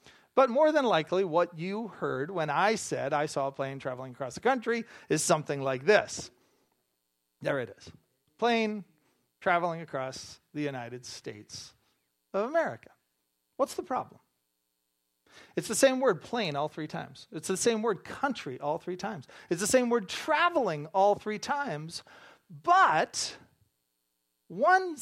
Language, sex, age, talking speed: English, male, 40-59, 150 wpm